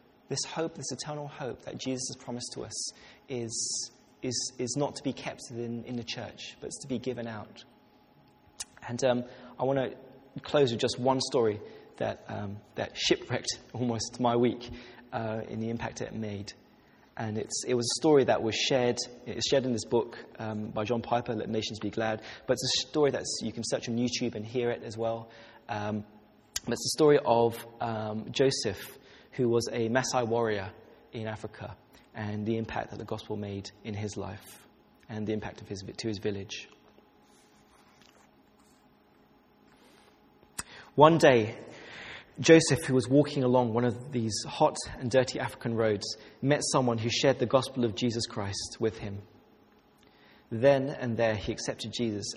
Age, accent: 20-39, British